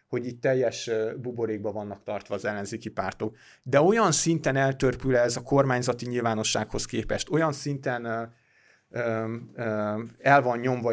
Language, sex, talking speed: Hungarian, male, 125 wpm